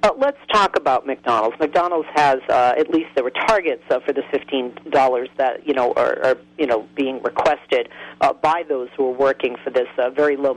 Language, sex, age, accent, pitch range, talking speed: English, female, 40-59, American, 135-170 Hz, 210 wpm